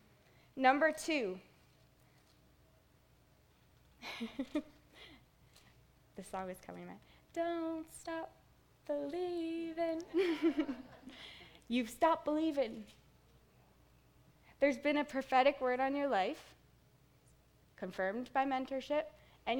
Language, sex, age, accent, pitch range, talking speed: English, female, 20-39, American, 195-260 Hz, 80 wpm